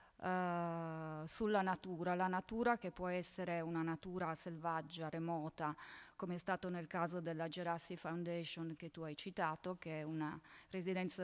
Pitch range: 165-190 Hz